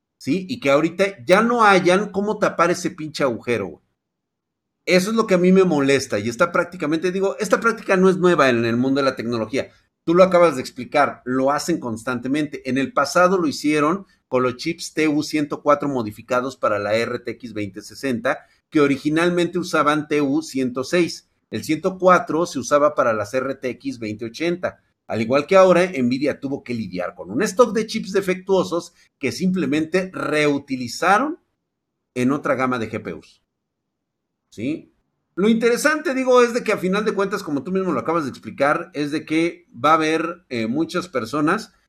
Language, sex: Spanish, male